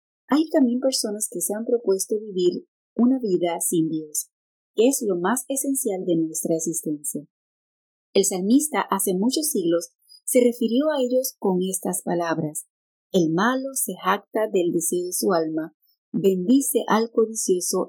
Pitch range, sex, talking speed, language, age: 175-240 Hz, female, 150 wpm, Spanish, 30-49